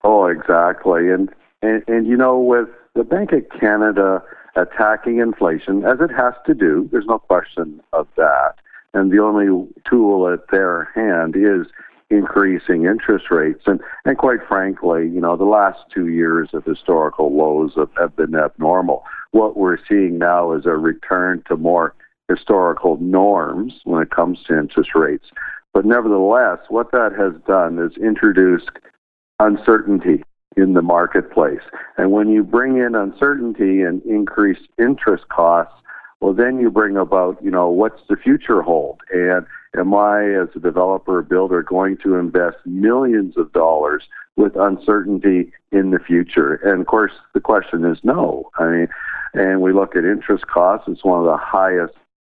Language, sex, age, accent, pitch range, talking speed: English, male, 60-79, American, 90-115 Hz, 160 wpm